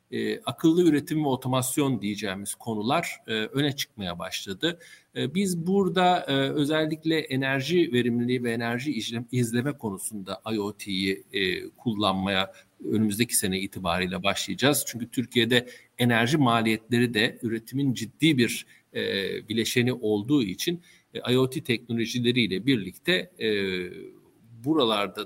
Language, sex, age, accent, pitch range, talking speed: Turkish, male, 50-69, native, 110-145 Hz, 95 wpm